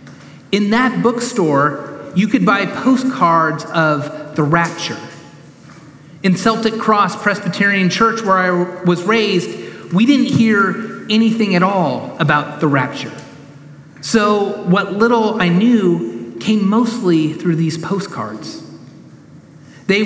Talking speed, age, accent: 115 wpm, 30-49, American